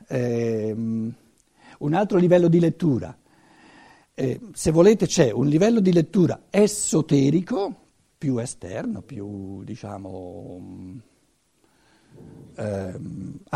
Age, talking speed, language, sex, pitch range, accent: 60-79, 90 wpm, Italian, male, 125-205 Hz, native